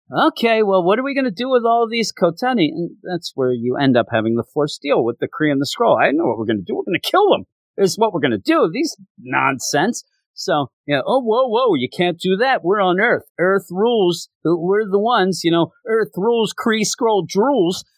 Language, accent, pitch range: English, American, 125-210 Hz